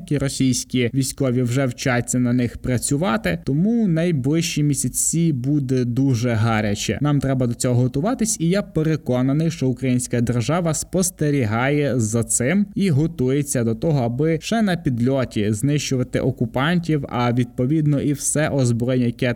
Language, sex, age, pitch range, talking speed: Ukrainian, male, 20-39, 125-155 Hz, 135 wpm